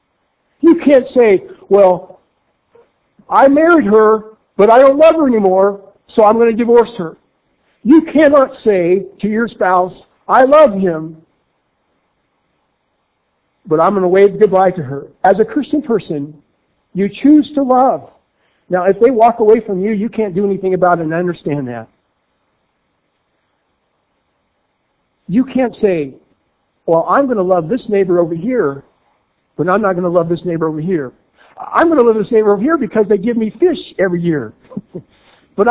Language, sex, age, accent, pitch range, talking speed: English, male, 60-79, American, 180-240 Hz, 165 wpm